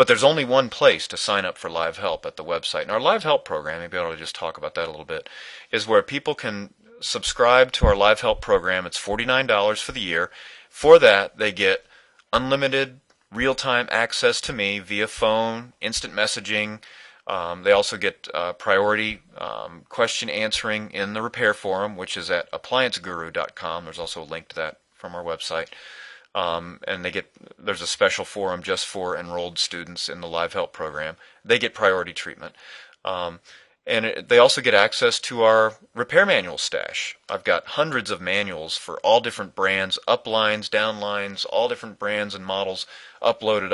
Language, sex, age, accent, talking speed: English, male, 30-49, American, 180 wpm